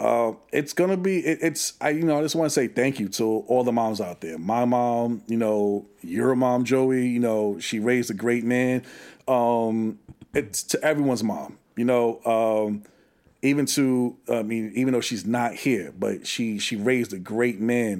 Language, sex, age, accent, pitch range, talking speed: English, male, 40-59, American, 110-130 Hz, 205 wpm